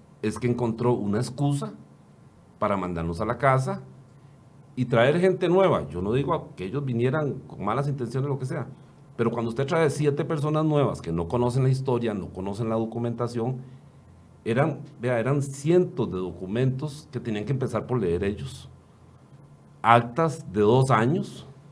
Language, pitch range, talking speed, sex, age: Spanish, 105-140 Hz, 165 wpm, male, 40-59